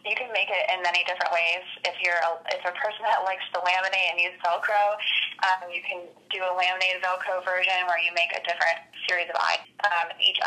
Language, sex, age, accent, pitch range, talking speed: English, female, 20-39, American, 170-190 Hz, 225 wpm